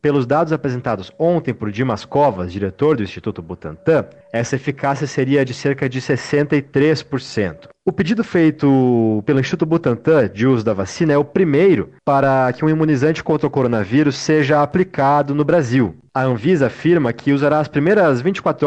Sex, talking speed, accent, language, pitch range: male, 160 wpm, Brazilian, Portuguese, 125-155 Hz